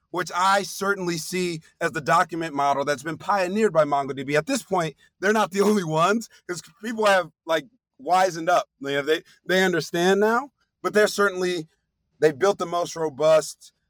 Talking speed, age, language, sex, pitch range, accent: 170 wpm, 30-49, English, male, 140-185 Hz, American